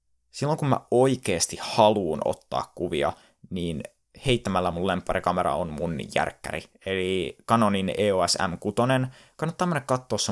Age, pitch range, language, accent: 20-39, 90-120 Hz, Finnish, native